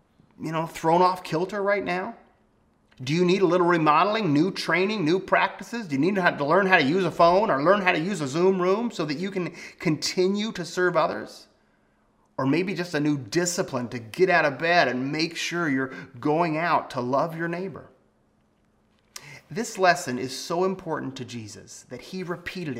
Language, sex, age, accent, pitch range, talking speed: English, male, 30-49, American, 130-180 Hz, 195 wpm